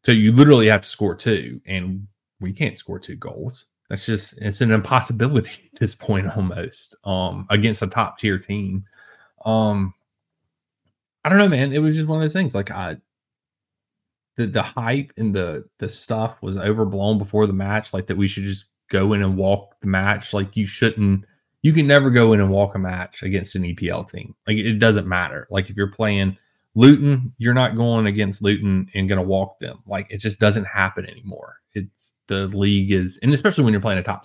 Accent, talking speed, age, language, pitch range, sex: American, 205 wpm, 20-39, English, 95-110 Hz, male